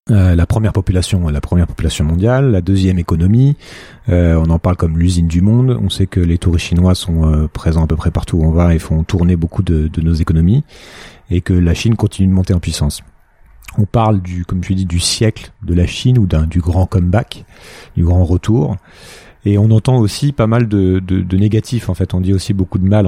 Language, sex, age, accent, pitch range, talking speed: French, male, 40-59, French, 85-105 Hz, 230 wpm